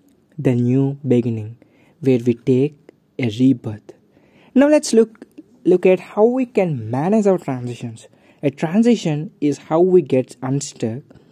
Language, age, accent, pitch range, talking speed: English, 20-39, Indian, 130-170 Hz, 140 wpm